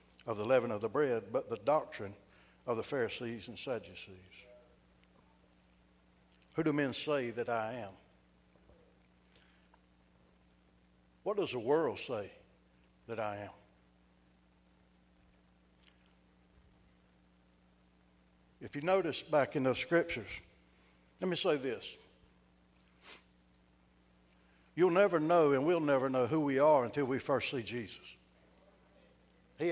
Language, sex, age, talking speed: English, male, 60-79, 115 wpm